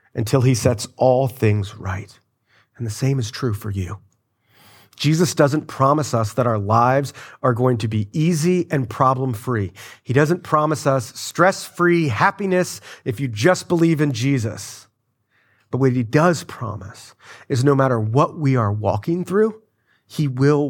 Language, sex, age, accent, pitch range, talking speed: English, male, 30-49, American, 115-155 Hz, 155 wpm